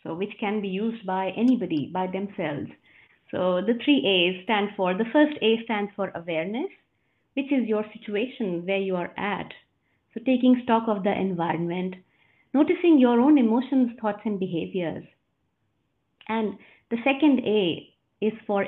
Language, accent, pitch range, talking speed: English, Indian, 190-245 Hz, 155 wpm